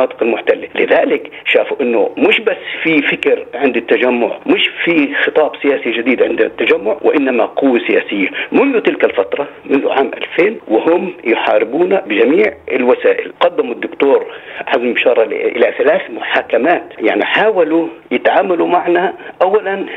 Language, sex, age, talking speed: Arabic, male, 50-69, 125 wpm